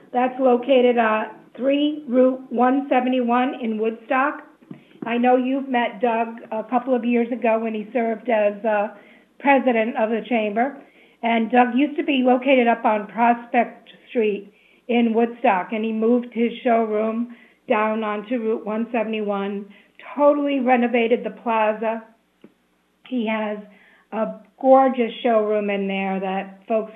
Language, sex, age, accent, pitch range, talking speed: English, female, 50-69, American, 205-245 Hz, 135 wpm